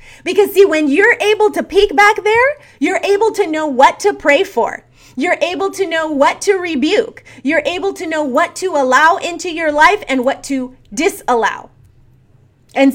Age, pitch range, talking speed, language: 30-49, 265-370 Hz, 180 wpm, English